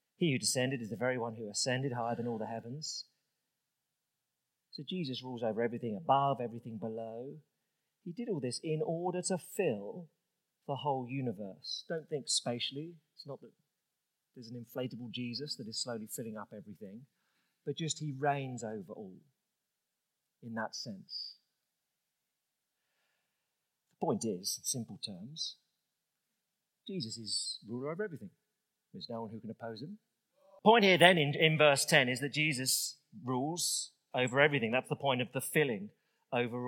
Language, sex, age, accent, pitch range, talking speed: English, male, 40-59, British, 120-155 Hz, 160 wpm